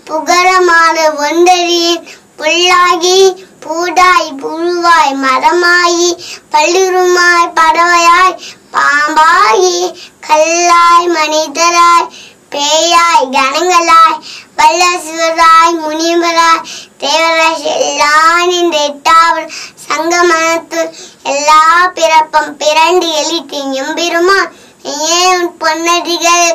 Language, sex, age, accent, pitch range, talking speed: Tamil, male, 20-39, native, 310-335 Hz, 55 wpm